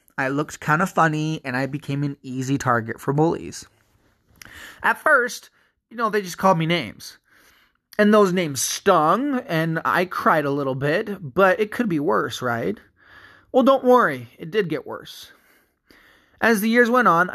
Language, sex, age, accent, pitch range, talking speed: English, male, 20-39, American, 145-190 Hz, 175 wpm